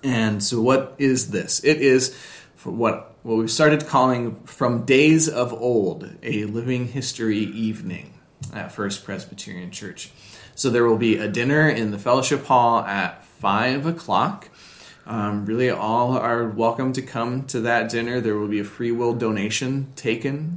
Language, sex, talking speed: English, male, 165 wpm